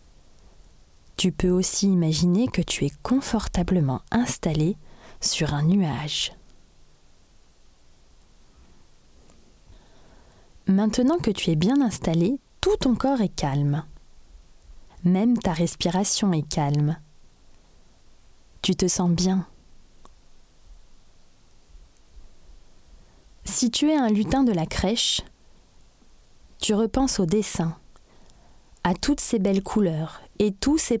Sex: female